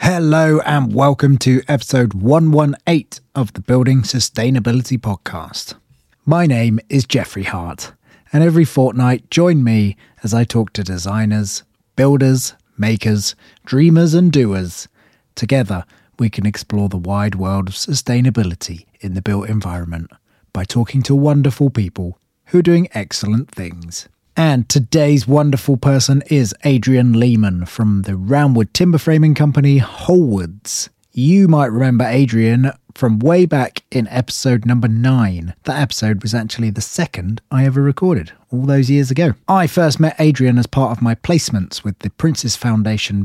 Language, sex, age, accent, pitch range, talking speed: English, male, 30-49, British, 105-140 Hz, 145 wpm